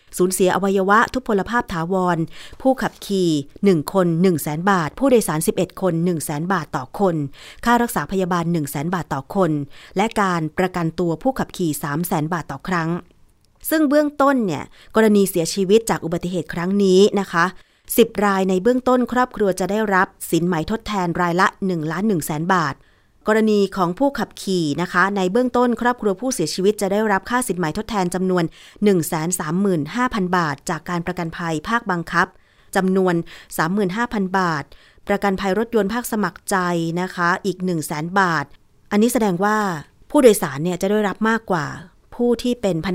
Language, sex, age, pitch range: Thai, female, 30-49, 170-205 Hz